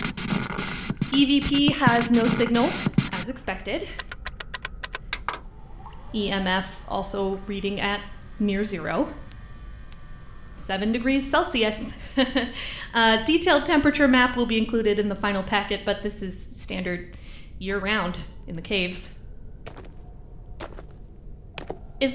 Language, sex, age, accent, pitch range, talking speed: English, female, 20-39, American, 230-315 Hz, 95 wpm